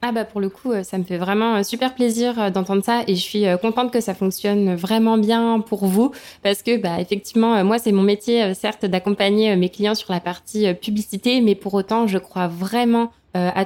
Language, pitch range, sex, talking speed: French, 190-225 Hz, female, 205 wpm